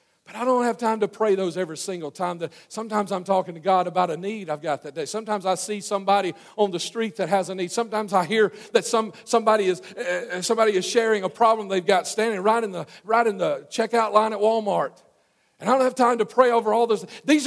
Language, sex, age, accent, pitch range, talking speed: English, male, 40-59, American, 180-235 Hz, 245 wpm